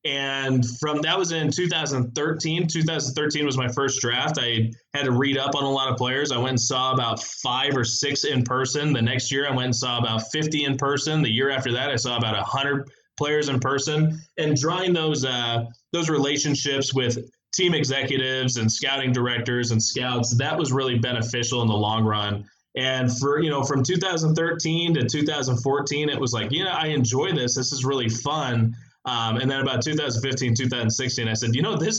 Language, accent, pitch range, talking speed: English, American, 115-145 Hz, 200 wpm